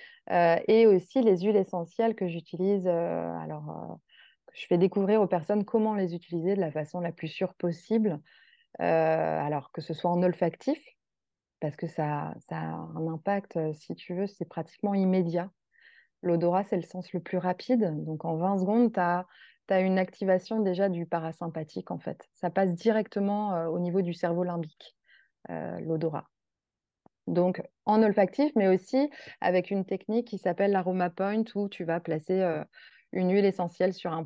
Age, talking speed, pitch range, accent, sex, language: 20-39, 165 wpm, 170-215 Hz, French, female, French